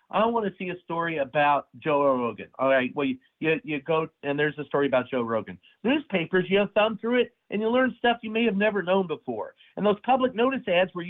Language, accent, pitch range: English, American, 140-185 Hz